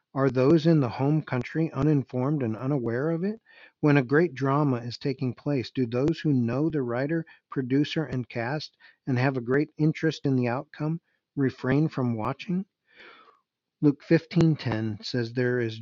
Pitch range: 115-145 Hz